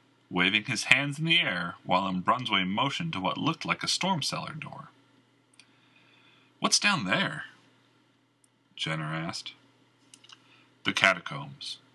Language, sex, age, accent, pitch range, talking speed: English, male, 40-59, American, 130-145 Hz, 125 wpm